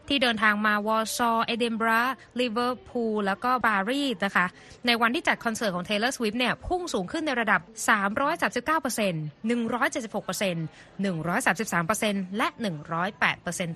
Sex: female